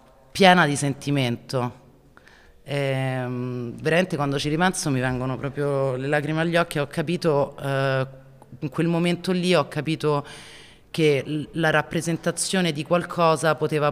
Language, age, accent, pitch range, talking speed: Italian, 30-49, native, 130-155 Hz, 140 wpm